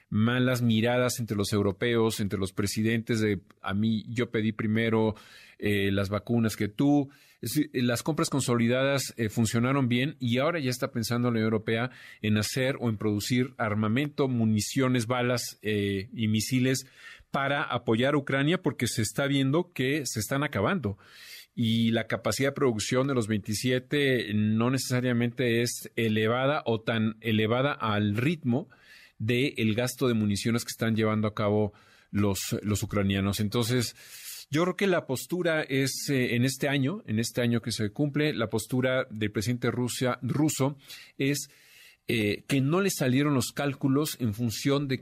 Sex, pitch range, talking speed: male, 110-135 Hz, 160 wpm